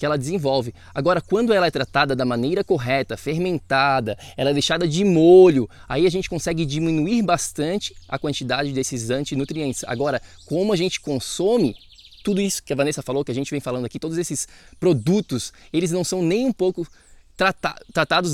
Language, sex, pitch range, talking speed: Portuguese, male, 135-180 Hz, 175 wpm